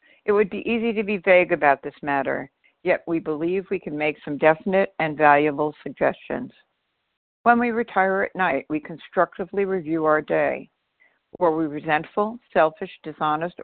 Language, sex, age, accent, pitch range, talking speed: English, female, 60-79, American, 150-185 Hz, 160 wpm